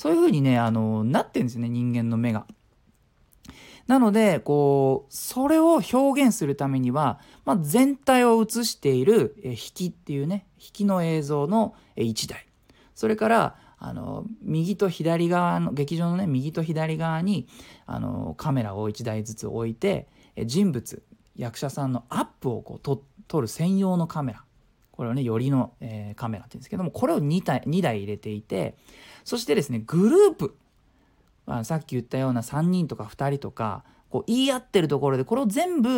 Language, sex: Japanese, male